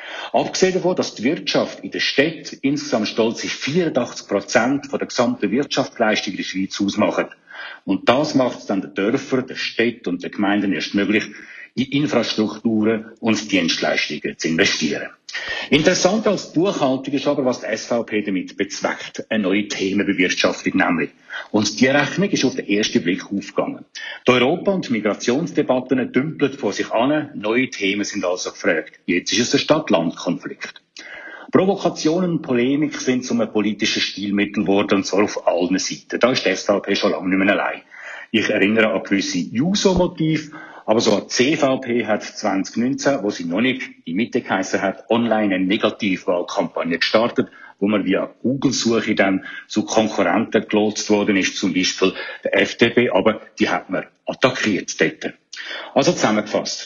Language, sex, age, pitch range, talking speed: German, male, 60-79, 105-140 Hz, 165 wpm